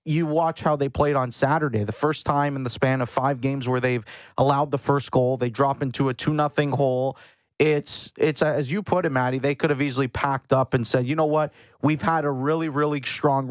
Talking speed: 235 wpm